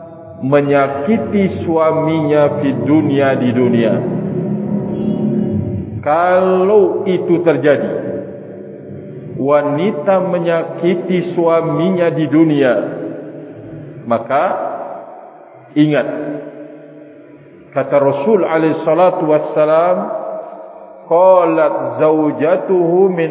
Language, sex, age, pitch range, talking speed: Indonesian, male, 50-69, 150-190 Hz, 60 wpm